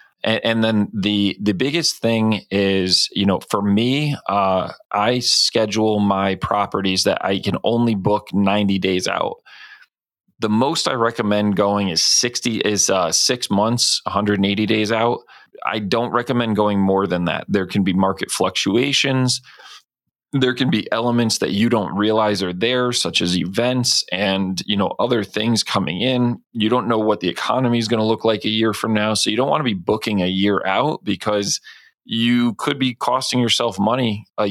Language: English